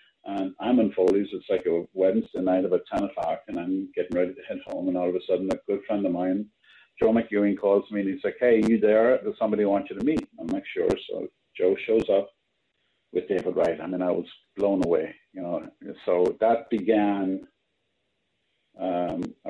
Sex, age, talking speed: male, 50-69, 215 wpm